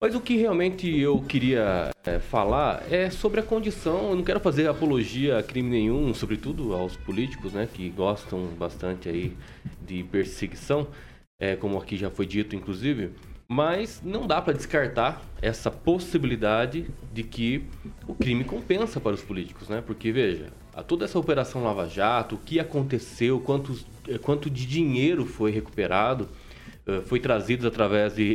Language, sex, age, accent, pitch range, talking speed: Portuguese, male, 20-39, Brazilian, 110-165 Hz, 155 wpm